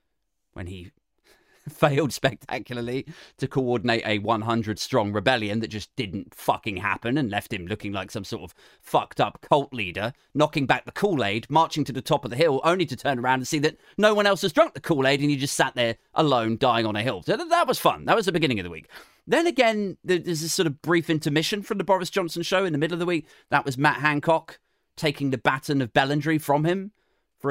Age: 30-49